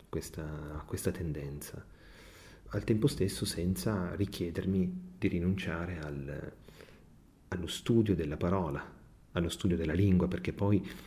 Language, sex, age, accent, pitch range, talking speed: Italian, male, 30-49, native, 80-100 Hz, 120 wpm